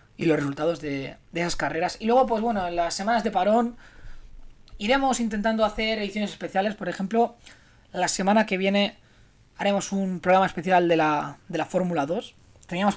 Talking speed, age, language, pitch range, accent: 175 wpm, 20-39, Spanish, 160-200 Hz, Spanish